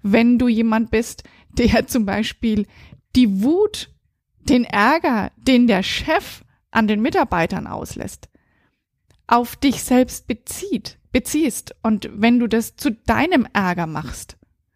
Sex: female